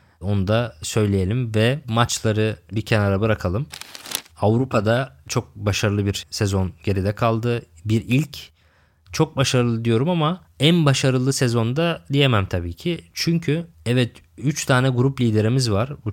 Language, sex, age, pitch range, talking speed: Turkish, male, 20-39, 100-125 Hz, 130 wpm